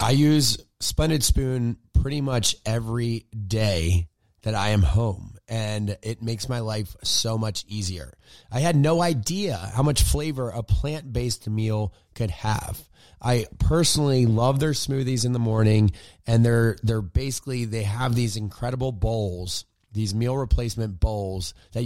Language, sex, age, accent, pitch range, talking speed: English, male, 30-49, American, 105-130 Hz, 150 wpm